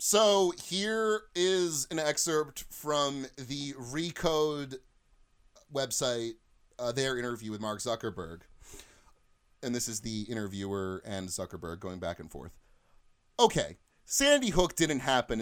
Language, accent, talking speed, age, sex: English, American, 120 wpm, 30-49, male